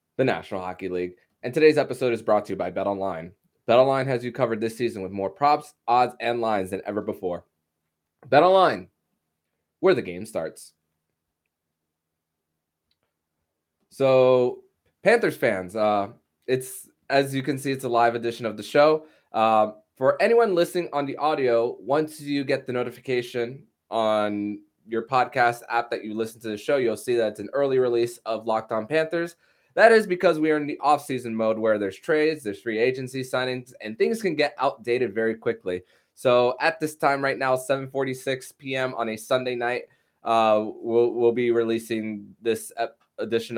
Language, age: English, 20-39